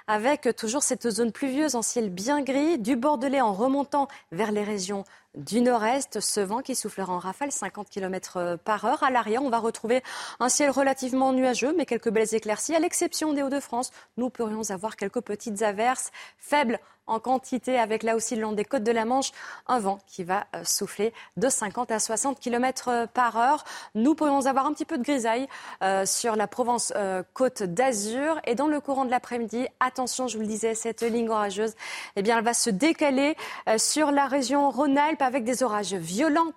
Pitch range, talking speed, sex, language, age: 220-275 Hz, 195 wpm, female, French, 20-39